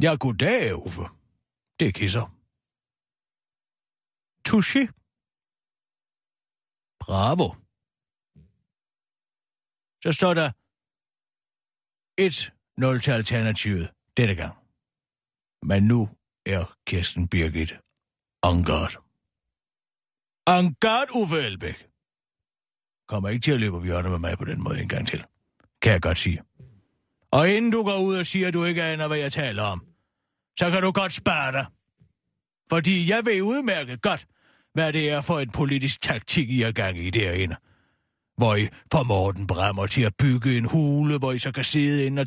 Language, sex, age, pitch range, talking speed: Danish, male, 60-79, 100-165 Hz, 140 wpm